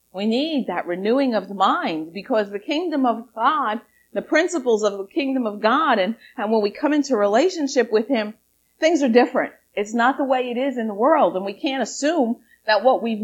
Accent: American